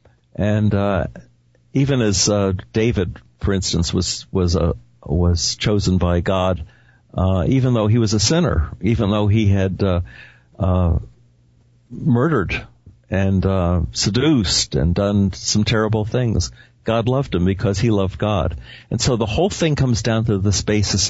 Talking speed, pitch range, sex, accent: 155 wpm, 90-115 Hz, male, American